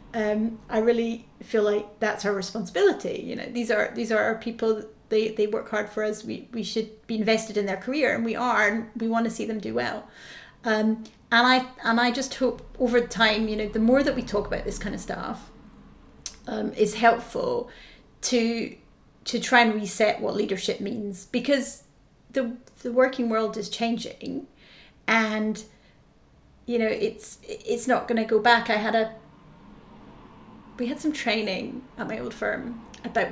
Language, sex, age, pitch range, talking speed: English, female, 30-49, 220-275 Hz, 185 wpm